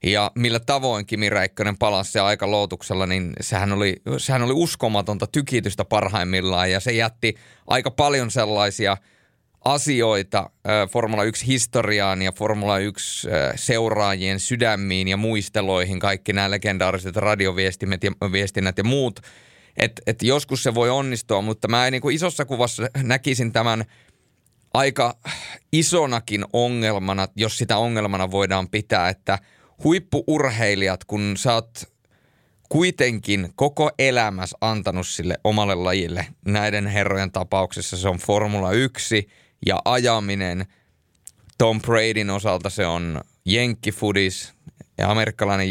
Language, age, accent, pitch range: Finnish, 30-49, native, 95-120 Hz